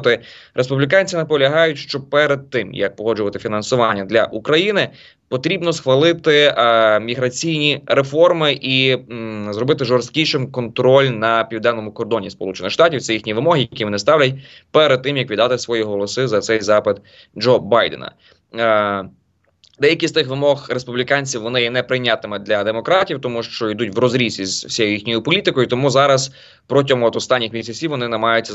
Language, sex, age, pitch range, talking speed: Ukrainian, male, 20-39, 115-145 Hz, 145 wpm